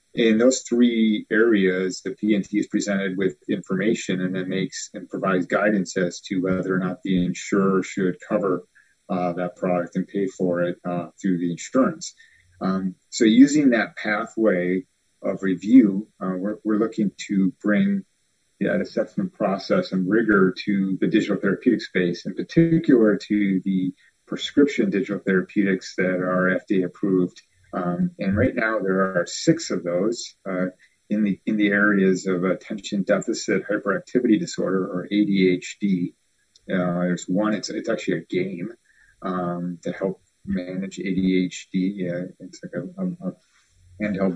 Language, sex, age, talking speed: English, male, 40-59, 150 wpm